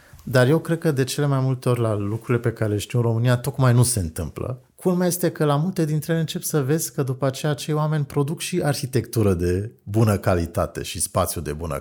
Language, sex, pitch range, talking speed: Romanian, male, 95-125 Hz, 235 wpm